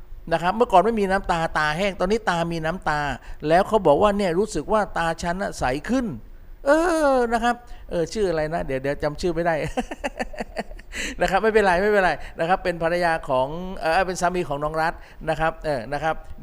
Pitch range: 155-210 Hz